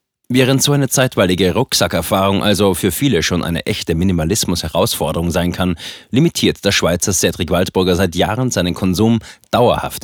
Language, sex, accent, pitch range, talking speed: German, male, German, 90-115 Hz, 145 wpm